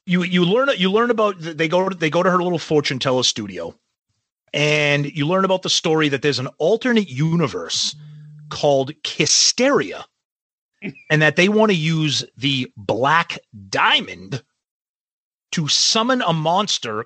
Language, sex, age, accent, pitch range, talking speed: English, male, 30-49, American, 135-185 Hz, 150 wpm